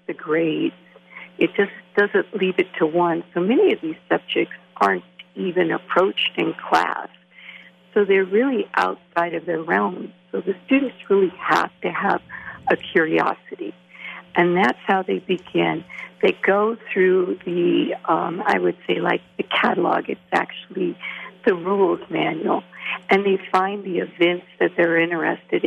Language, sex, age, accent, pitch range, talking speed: English, female, 50-69, American, 175-200 Hz, 150 wpm